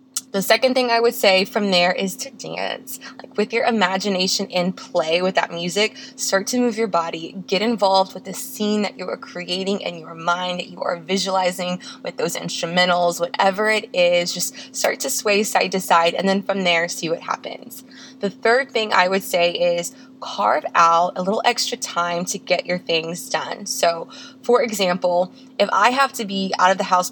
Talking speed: 200 wpm